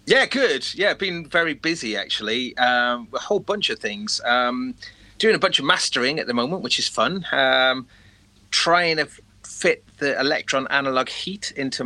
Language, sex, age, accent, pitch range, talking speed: English, male, 40-59, British, 115-140 Hz, 180 wpm